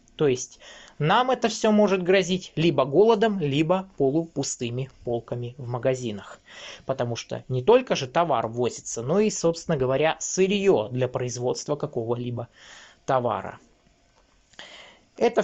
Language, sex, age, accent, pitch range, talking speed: Russian, male, 20-39, native, 130-185 Hz, 120 wpm